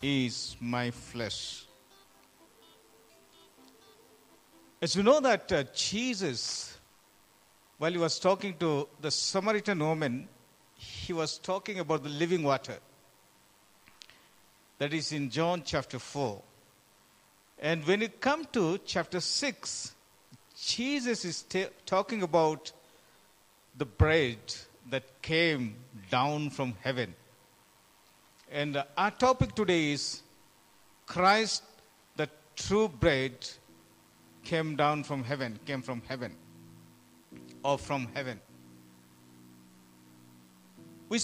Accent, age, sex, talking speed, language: native, 60-79, male, 100 wpm, Telugu